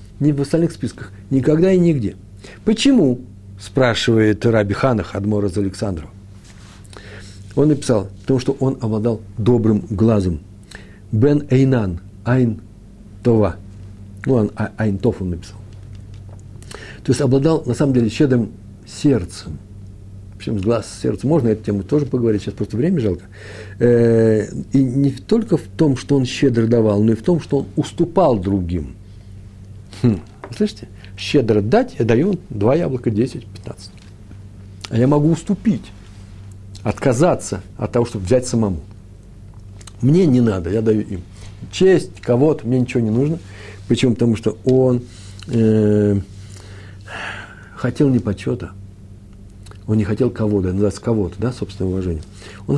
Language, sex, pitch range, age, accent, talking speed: Russian, male, 100-125 Hz, 60-79, native, 135 wpm